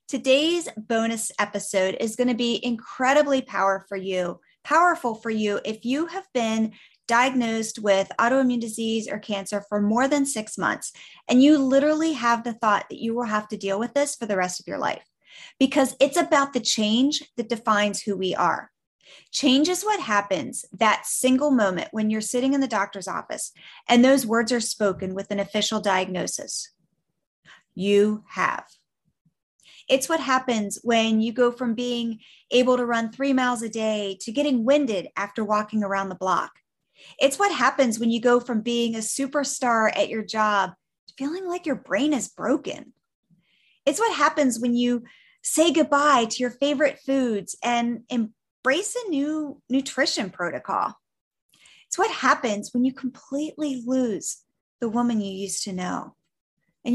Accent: American